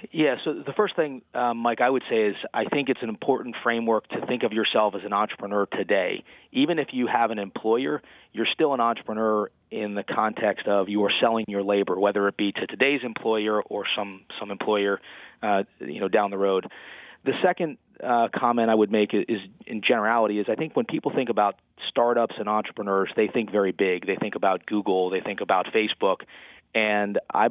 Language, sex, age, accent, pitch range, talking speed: English, male, 30-49, American, 100-110 Hz, 205 wpm